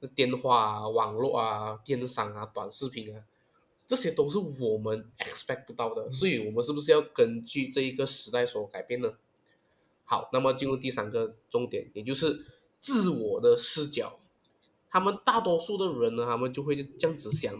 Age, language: 20-39, Chinese